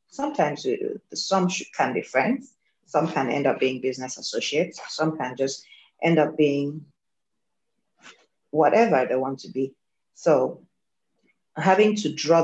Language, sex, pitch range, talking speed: English, female, 130-155 Hz, 130 wpm